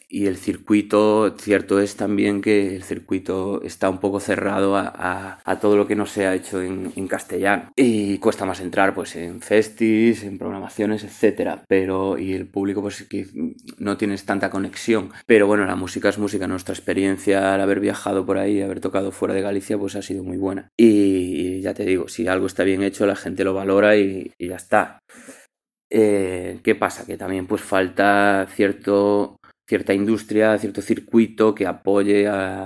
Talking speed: 190 wpm